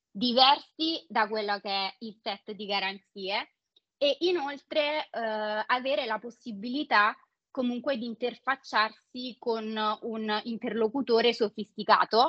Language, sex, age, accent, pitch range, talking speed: Italian, female, 20-39, native, 205-245 Hz, 105 wpm